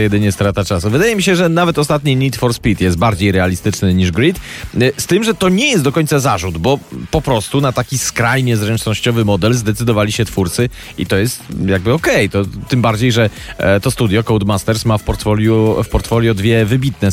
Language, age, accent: Polish, 30-49, native